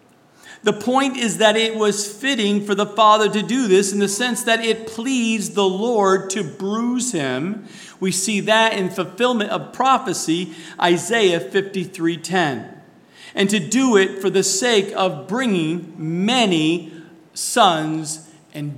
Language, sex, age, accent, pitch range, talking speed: English, male, 50-69, American, 170-225 Hz, 145 wpm